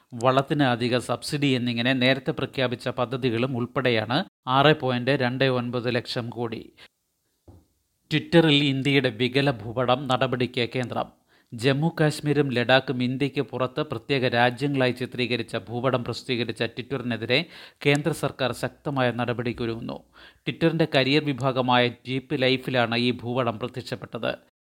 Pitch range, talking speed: 120-140 Hz, 100 wpm